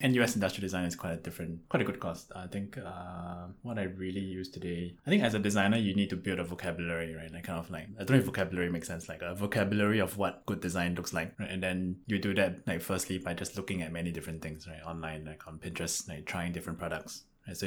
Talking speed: 260 wpm